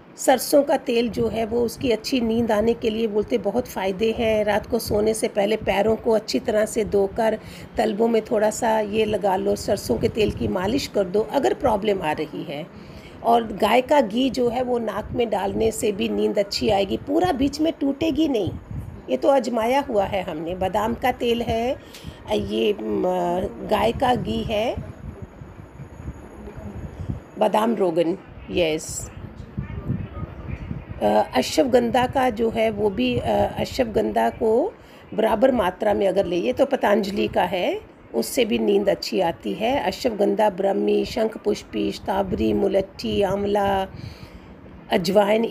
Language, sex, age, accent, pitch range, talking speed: Hindi, female, 50-69, native, 200-240 Hz, 155 wpm